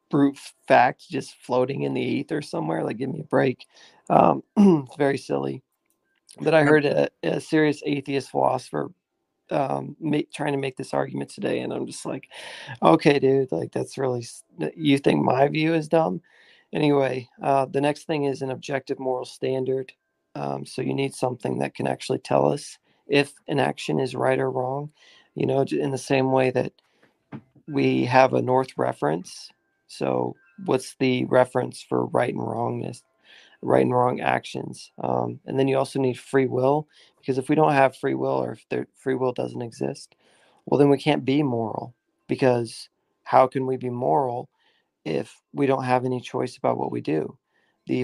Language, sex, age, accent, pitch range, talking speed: English, male, 40-59, American, 120-140 Hz, 180 wpm